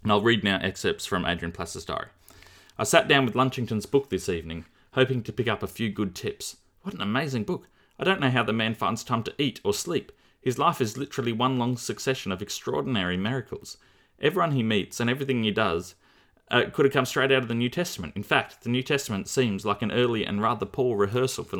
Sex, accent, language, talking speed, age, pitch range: male, Australian, English, 230 wpm, 30-49, 100-130 Hz